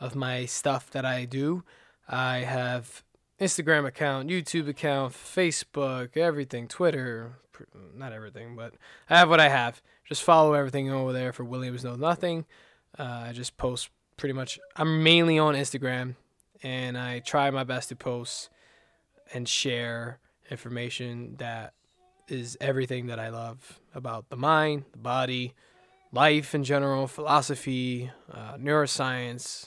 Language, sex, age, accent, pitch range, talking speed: English, male, 20-39, American, 120-140 Hz, 140 wpm